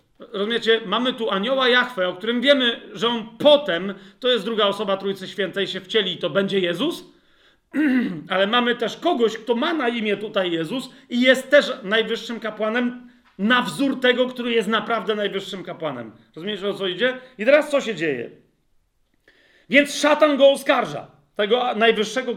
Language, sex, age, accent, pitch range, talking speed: Polish, male, 40-59, native, 205-265 Hz, 165 wpm